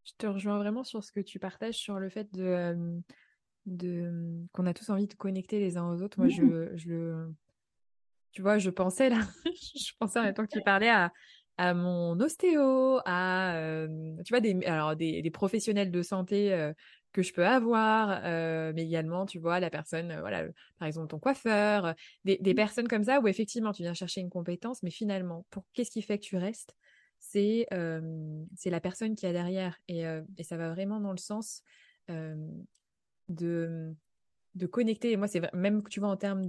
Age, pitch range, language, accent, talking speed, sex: 20-39, 170-210 Hz, French, French, 195 wpm, female